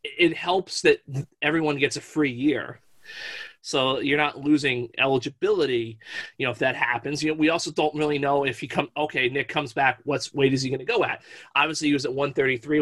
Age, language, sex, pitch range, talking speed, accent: 30-49, English, male, 130-160 Hz, 210 wpm, American